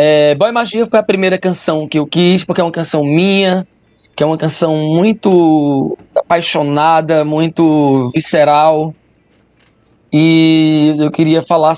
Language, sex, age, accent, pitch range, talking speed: Portuguese, male, 20-39, Brazilian, 150-185 Hz, 140 wpm